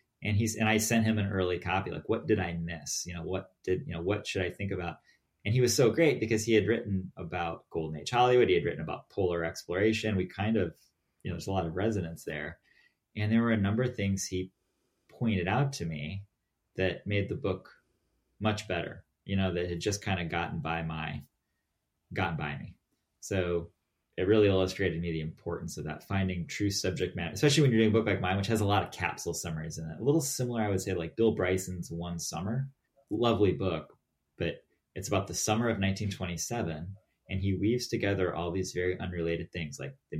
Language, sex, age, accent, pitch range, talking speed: English, male, 30-49, American, 90-110 Hz, 220 wpm